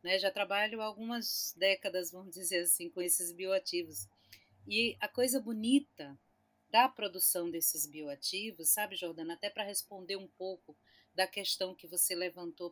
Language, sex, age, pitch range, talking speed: Portuguese, female, 40-59, 165-220 Hz, 145 wpm